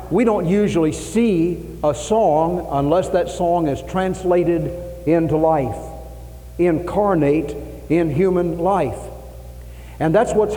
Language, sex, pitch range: English, male, 155-190 Hz